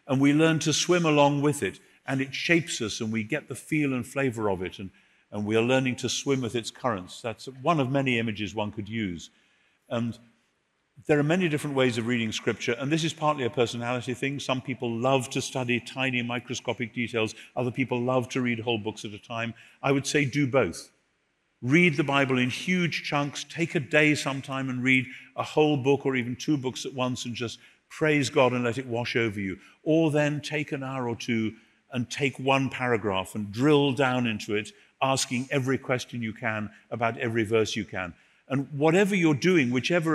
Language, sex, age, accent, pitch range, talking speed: English, male, 50-69, British, 115-140 Hz, 210 wpm